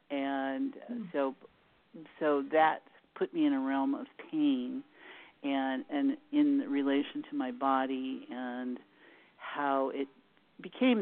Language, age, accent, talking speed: English, 50-69, American, 120 wpm